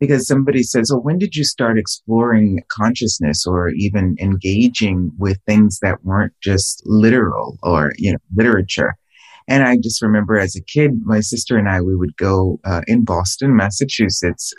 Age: 30-49